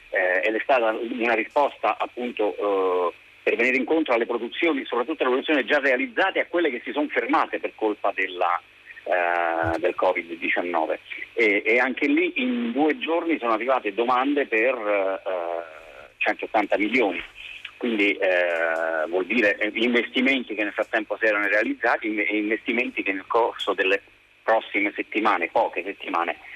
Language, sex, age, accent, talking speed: Italian, male, 30-49, native, 145 wpm